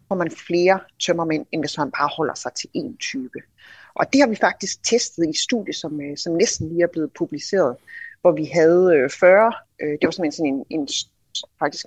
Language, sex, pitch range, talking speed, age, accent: Danish, female, 155-195 Hz, 190 wpm, 30-49, native